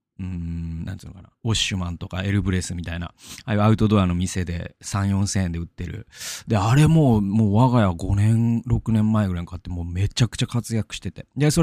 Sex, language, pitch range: male, Japanese, 90-120 Hz